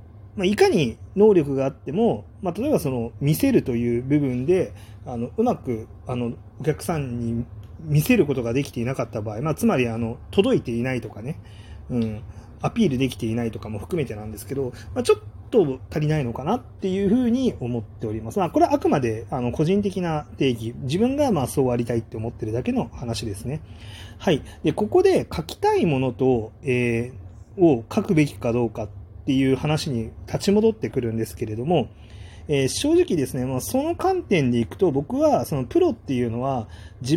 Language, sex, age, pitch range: Japanese, male, 30-49, 110-165 Hz